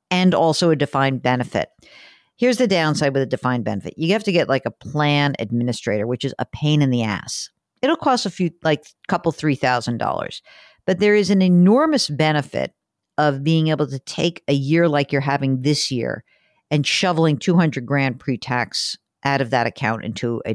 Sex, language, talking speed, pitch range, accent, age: female, English, 185 wpm, 135-210 Hz, American, 50-69